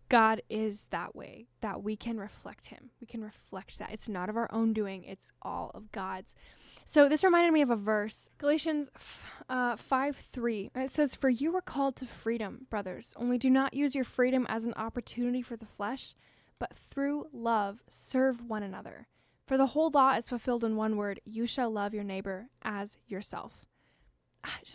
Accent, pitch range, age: American, 220-270 Hz, 10-29